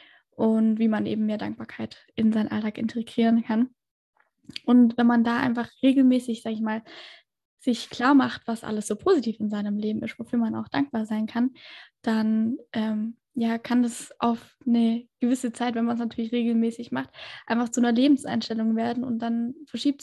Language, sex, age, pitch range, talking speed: German, female, 10-29, 220-250 Hz, 175 wpm